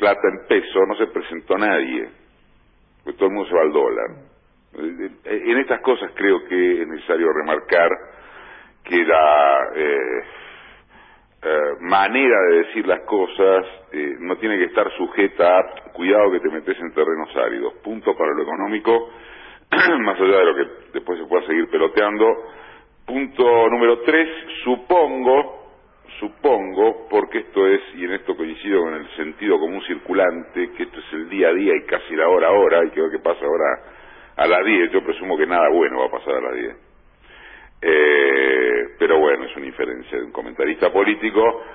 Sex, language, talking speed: male, Spanish, 170 wpm